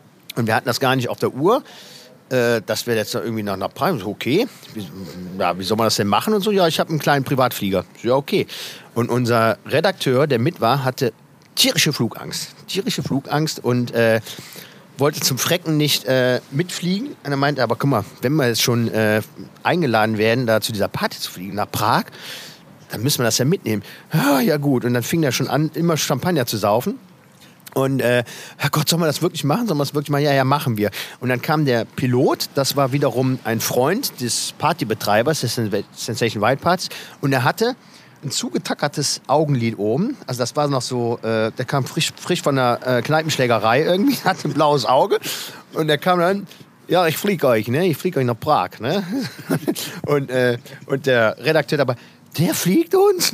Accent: German